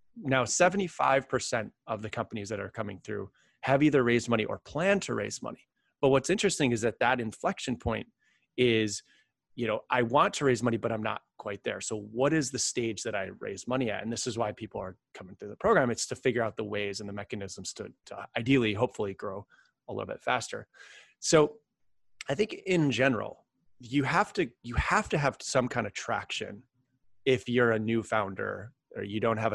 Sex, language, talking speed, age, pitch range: male, English, 205 wpm, 30-49, 110-135 Hz